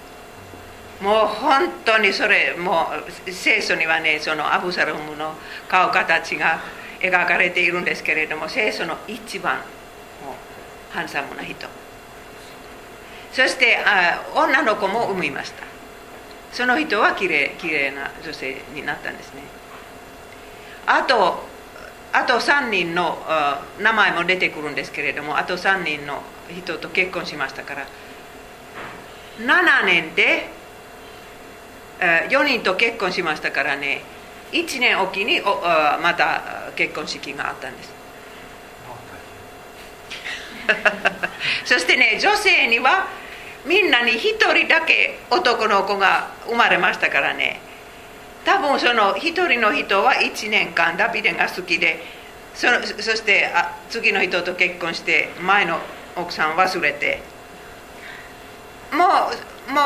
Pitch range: 175-240 Hz